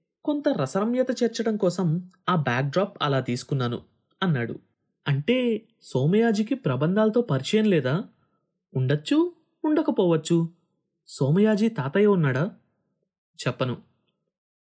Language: Telugu